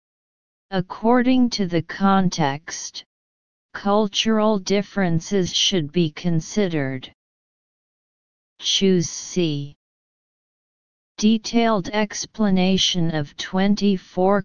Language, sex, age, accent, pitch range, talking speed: English, female, 40-59, American, 160-205 Hz, 60 wpm